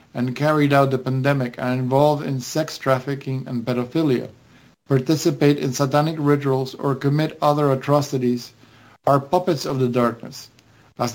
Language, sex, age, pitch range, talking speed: English, male, 50-69, 125-150 Hz, 145 wpm